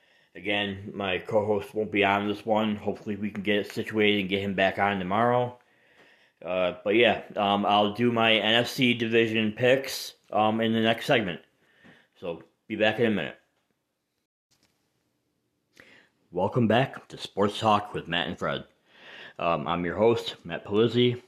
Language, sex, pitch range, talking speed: English, male, 95-115 Hz, 160 wpm